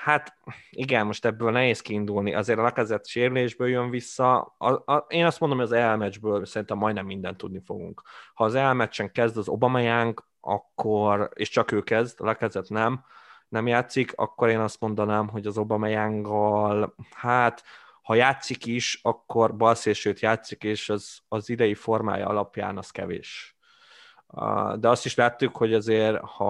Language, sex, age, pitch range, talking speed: Hungarian, male, 20-39, 105-120 Hz, 160 wpm